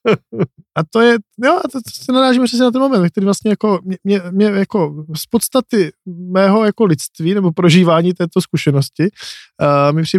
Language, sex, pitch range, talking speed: Czech, male, 150-180 Hz, 185 wpm